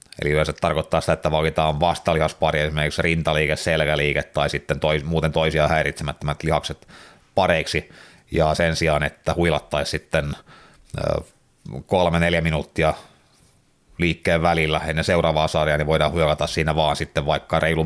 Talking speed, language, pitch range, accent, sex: 135 wpm, Finnish, 75-85 Hz, native, male